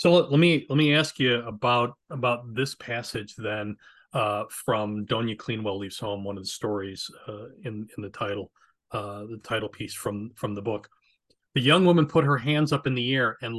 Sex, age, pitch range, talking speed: male, 30-49, 115-160 Hz, 210 wpm